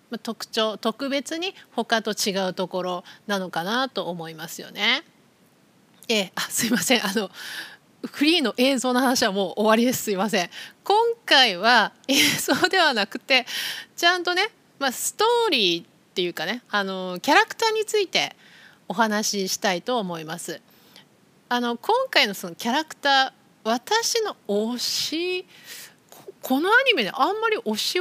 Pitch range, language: 205-315 Hz, Japanese